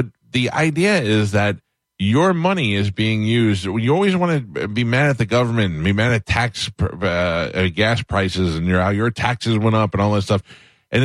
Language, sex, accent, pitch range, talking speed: English, male, American, 95-125 Hz, 195 wpm